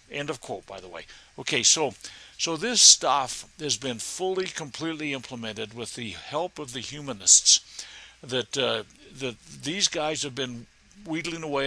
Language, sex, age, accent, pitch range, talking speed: English, male, 60-79, American, 120-160 Hz, 160 wpm